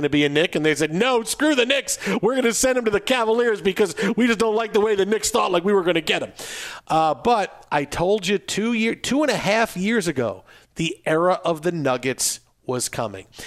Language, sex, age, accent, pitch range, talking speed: English, male, 40-59, American, 160-225 Hz, 255 wpm